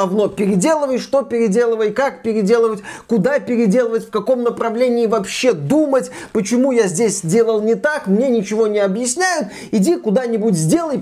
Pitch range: 185-240 Hz